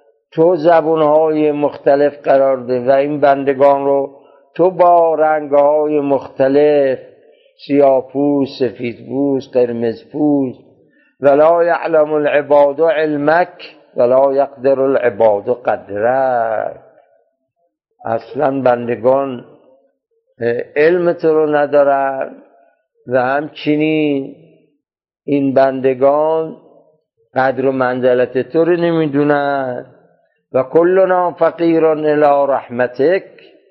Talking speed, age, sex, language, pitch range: 80 wpm, 50-69, male, Persian, 130-160 Hz